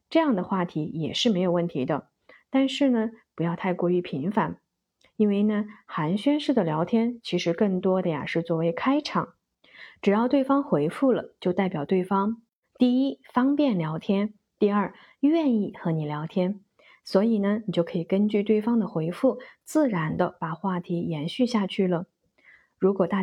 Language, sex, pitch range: Chinese, female, 175-235 Hz